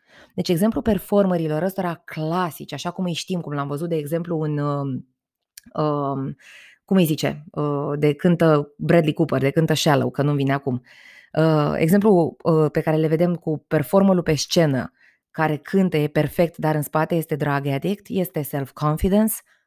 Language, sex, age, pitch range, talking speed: Romanian, female, 20-39, 155-205 Hz, 170 wpm